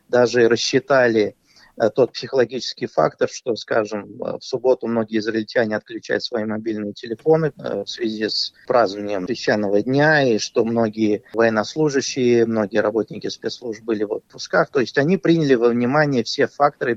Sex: male